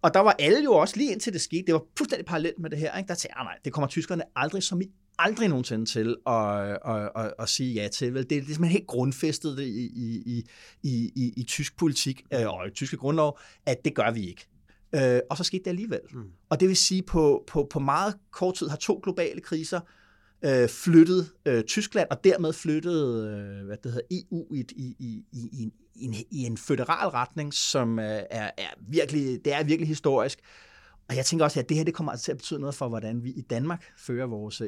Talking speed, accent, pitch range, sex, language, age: 225 wpm, native, 120-165 Hz, male, Danish, 30-49